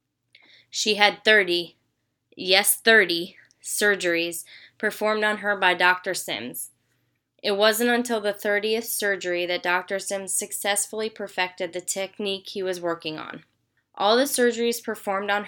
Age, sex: 10-29, female